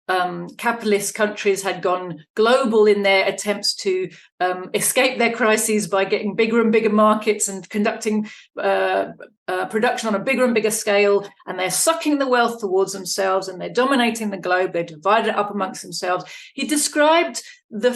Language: English